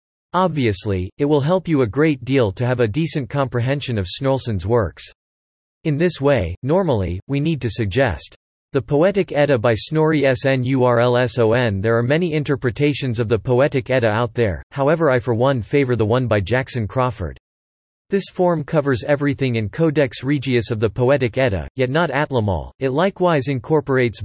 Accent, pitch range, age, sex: American, 110-145 Hz, 40-59, male